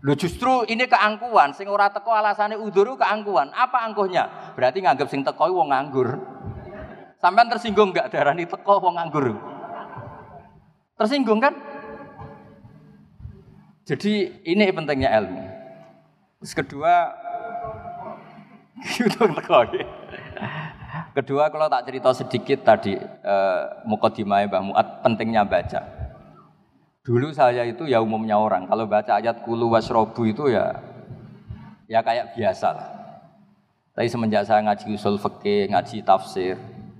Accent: native